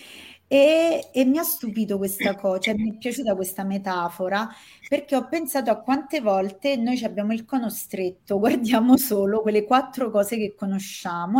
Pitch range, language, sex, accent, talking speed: 195-260 Hz, Italian, female, native, 165 wpm